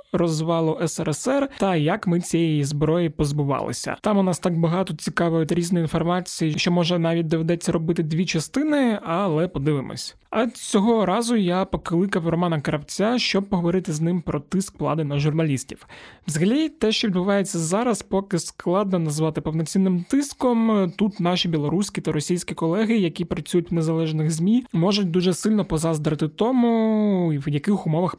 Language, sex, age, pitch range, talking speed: Ukrainian, male, 20-39, 160-195 Hz, 150 wpm